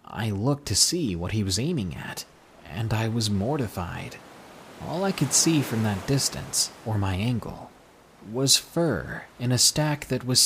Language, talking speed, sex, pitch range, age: English, 170 wpm, male, 100-135 Hz, 30-49